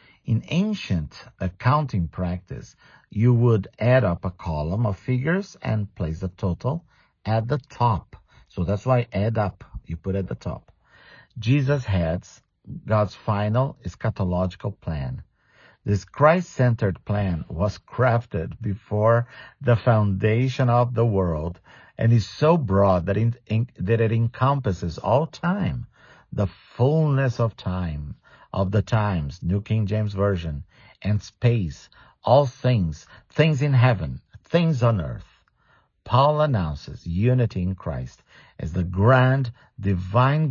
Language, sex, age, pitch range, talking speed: English, male, 50-69, 95-125 Hz, 125 wpm